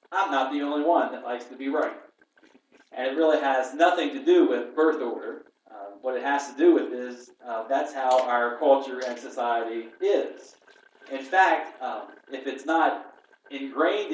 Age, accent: 40-59, American